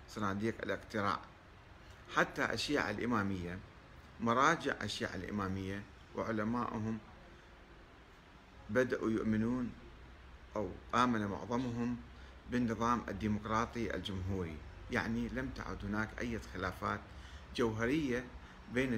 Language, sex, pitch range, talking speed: Arabic, male, 90-120 Hz, 80 wpm